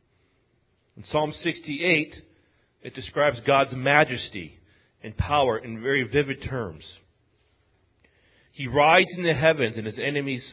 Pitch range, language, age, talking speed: 110-145 Hz, English, 40-59, 120 wpm